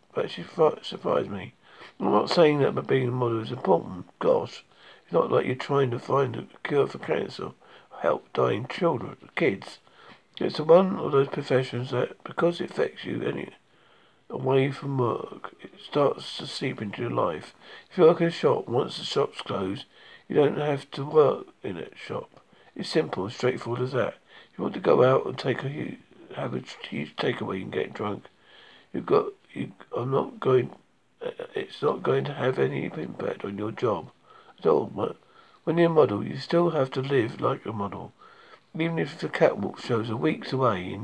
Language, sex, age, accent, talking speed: English, male, 50-69, British, 190 wpm